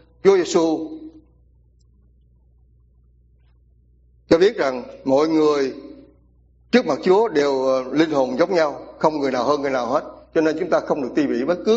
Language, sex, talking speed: English, male, 165 wpm